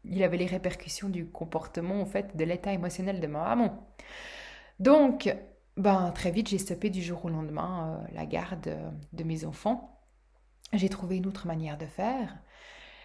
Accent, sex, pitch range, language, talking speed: French, female, 175-215 Hz, French, 170 wpm